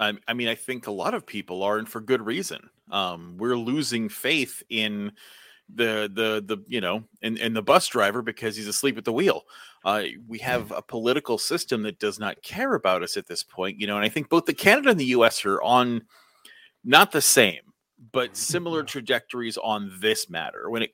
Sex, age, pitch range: male, 30-49, 105-130 Hz